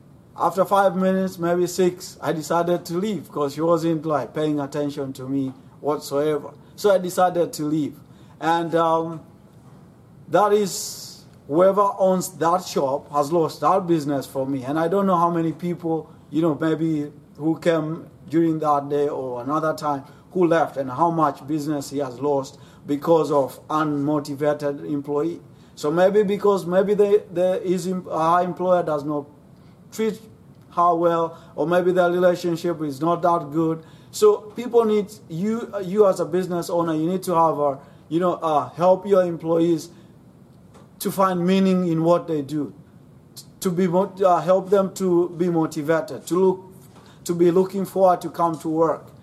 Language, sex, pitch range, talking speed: English, male, 150-180 Hz, 165 wpm